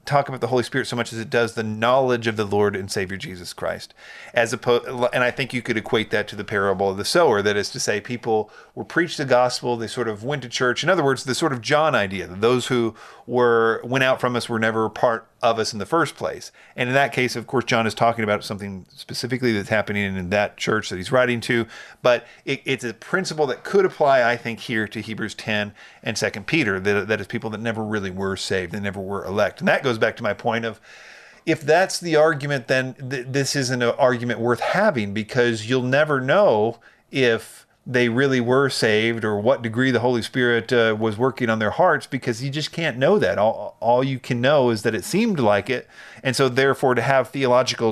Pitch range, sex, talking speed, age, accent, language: 110-130 Hz, male, 235 wpm, 40-59, American, English